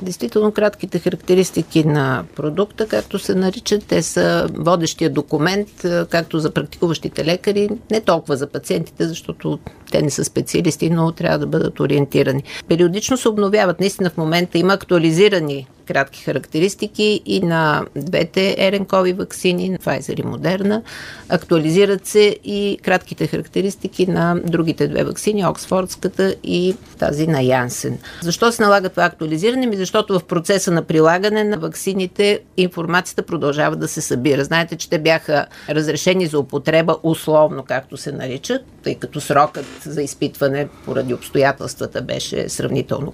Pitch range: 150-195 Hz